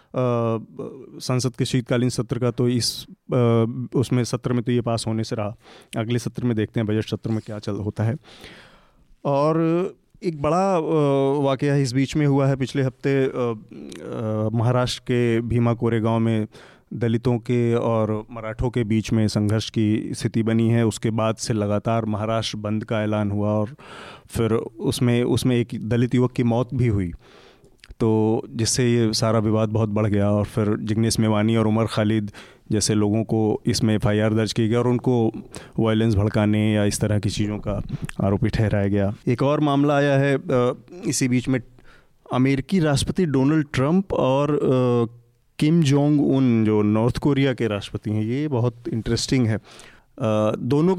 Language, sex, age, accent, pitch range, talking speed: Hindi, male, 30-49, native, 110-135 Hz, 165 wpm